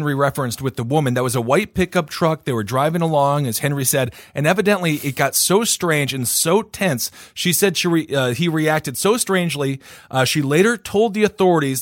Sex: male